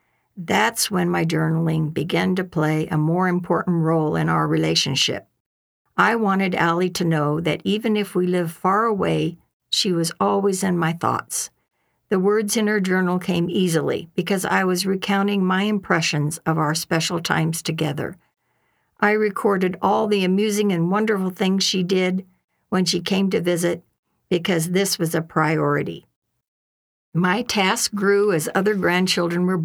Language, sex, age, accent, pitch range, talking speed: English, female, 60-79, American, 165-205 Hz, 155 wpm